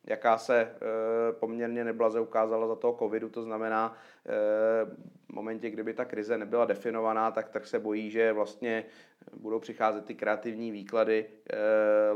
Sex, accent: male, native